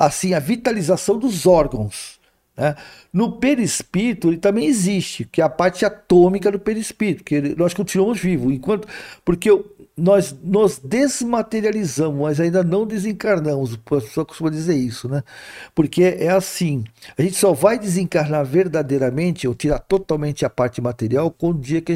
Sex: male